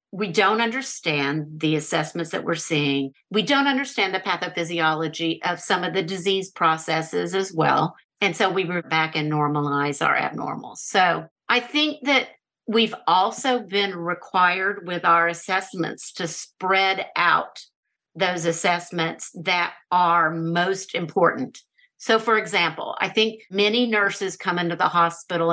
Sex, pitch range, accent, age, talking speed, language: female, 170-220 Hz, American, 50-69, 145 wpm, English